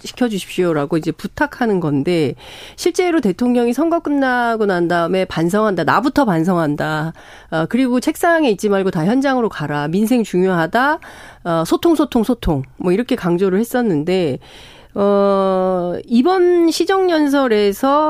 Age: 40-59